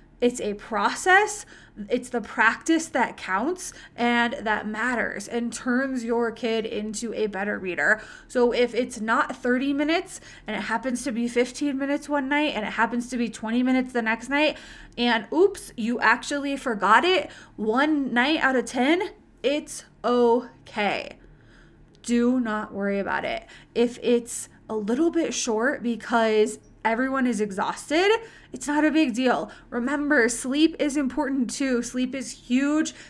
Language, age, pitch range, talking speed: English, 20-39, 230-275 Hz, 155 wpm